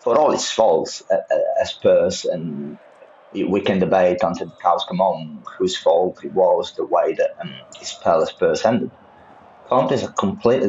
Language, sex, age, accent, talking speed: English, male, 30-49, British, 180 wpm